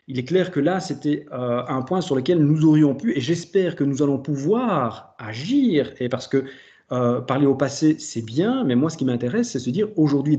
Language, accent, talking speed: French, French, 225 wpm